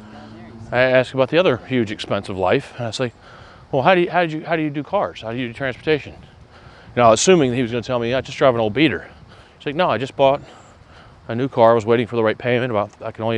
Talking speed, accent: 295 wpm, American